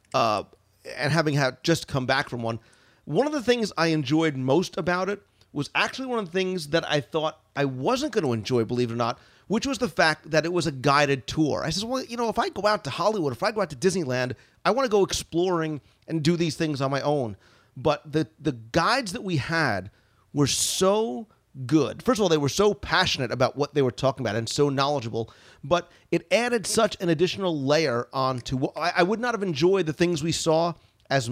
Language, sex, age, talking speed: English, male, 40-59, 225 wpm